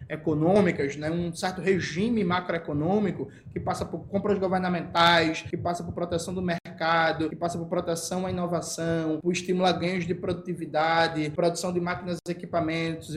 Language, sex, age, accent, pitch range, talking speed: Portuguese, male, 20-39, Brazilian, 155-190 Hz, 150 wpm